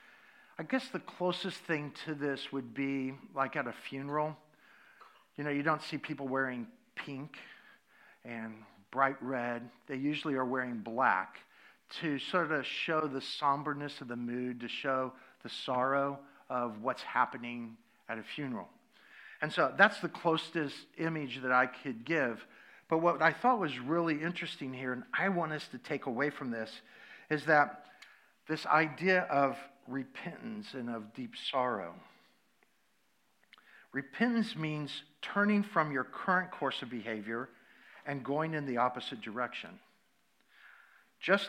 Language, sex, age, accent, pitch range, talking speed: English, male, 50-69, American, 130-165 Hz, 145 wpm